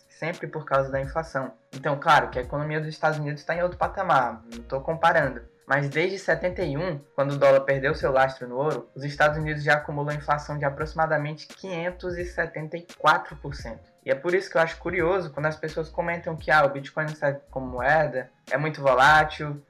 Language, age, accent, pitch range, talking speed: Portuguese, 10-29, Brazilian, 140-175 Hz, 190 wpm